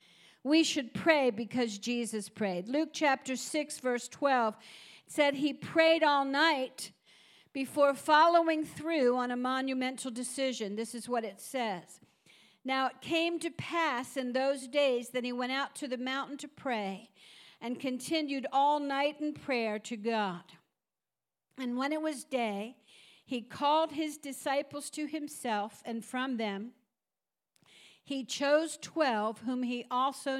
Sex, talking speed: female, 145 wpm